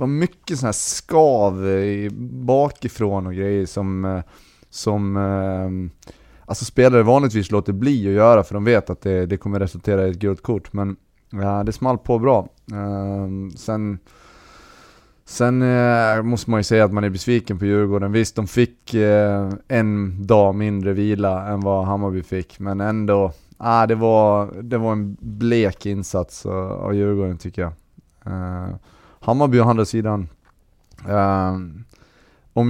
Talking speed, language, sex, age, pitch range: 145 wpm, Swedish, male, 20-39, 95-120 Hz